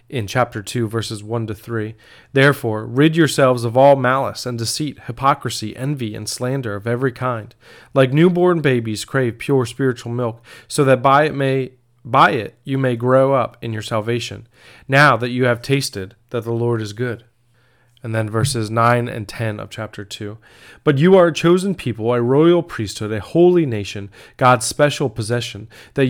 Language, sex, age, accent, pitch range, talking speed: English, male, 30-49, American, 115-135 Hz, 180 wpm